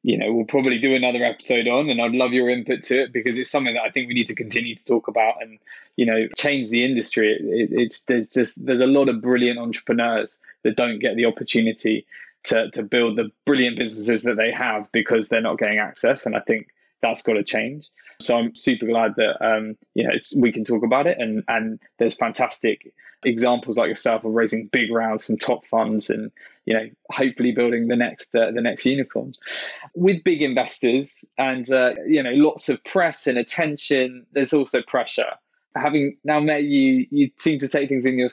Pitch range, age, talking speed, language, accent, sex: 120-150 Hz, 20-39, 215 wpm, English, British, male